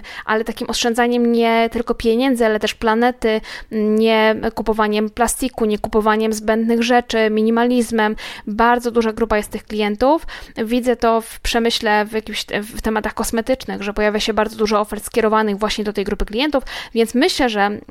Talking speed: 160 wpm